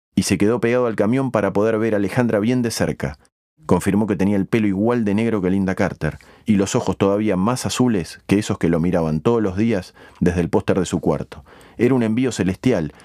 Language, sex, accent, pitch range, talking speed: Spanish, male, Argentinian, 90-115 Hz, 225 wpm